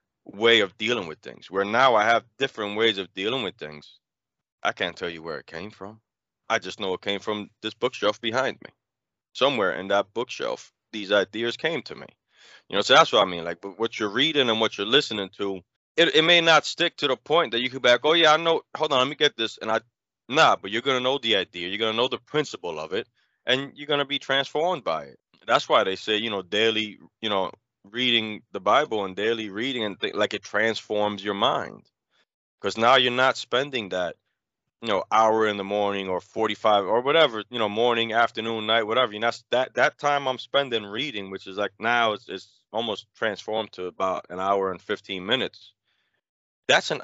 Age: 20-39